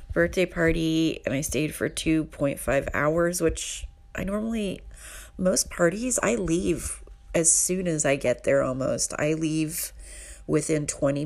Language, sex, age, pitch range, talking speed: English, female, 30-49, 140-185 Hz, 140 wpm